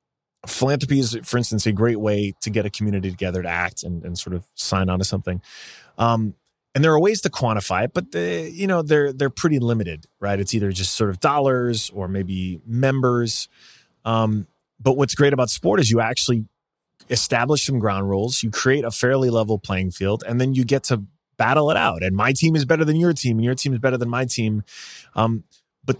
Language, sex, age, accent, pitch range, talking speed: English, male, 20-39, American, 100-135 Hz, 210 wpm